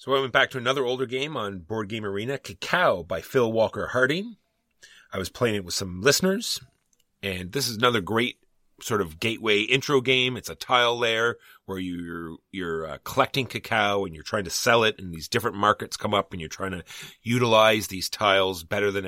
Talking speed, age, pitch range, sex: 200 wpm, 30-49, 90-115 Hz, male